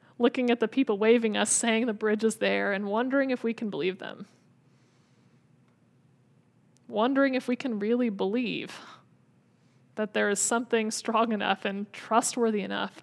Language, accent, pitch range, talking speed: English, American, 205-240 Hz, 150 wpm